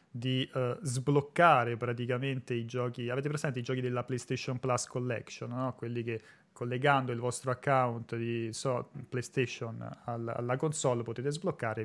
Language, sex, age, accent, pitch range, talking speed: Italian, male, 30-49, native, 120-135 Hz, 130 wpm